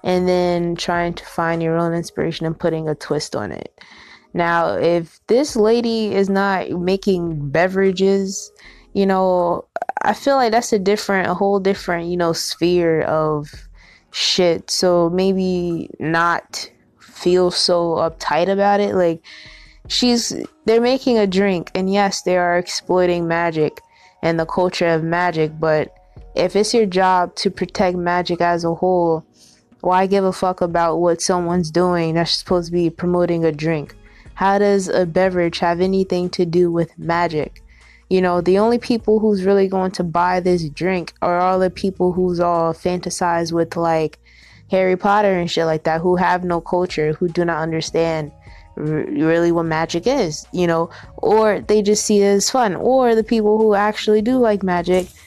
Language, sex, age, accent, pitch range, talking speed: English, female, 20-39, American, 165-195 Hz, 170 wpm